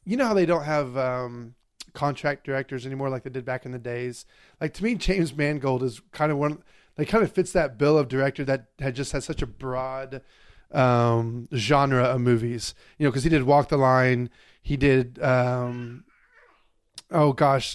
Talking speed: 195 wpm